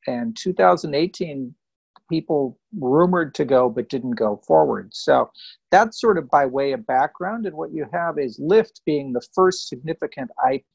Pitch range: 125-175 Hz